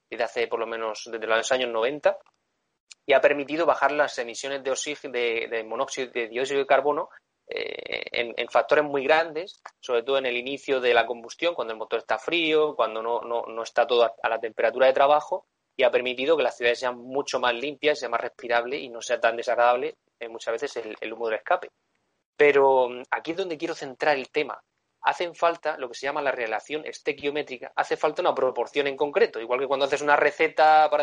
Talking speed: 215 wpm